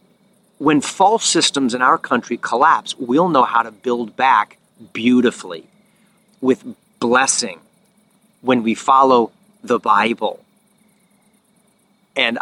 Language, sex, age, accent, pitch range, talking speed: English, male, 40-59, American, 130-205 Hz, 105 wpm